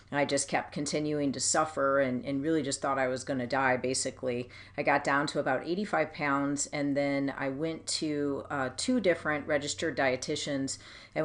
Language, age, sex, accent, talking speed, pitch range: English, 40-59, female, American, 185 wpm, 135-160 Hz